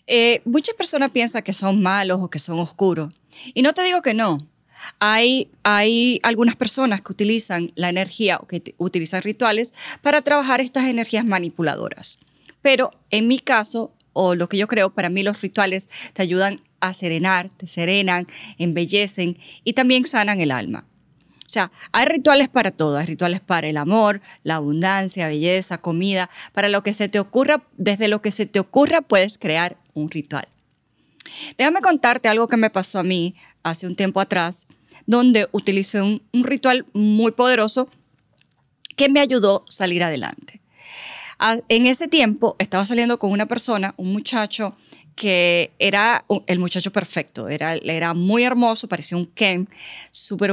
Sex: female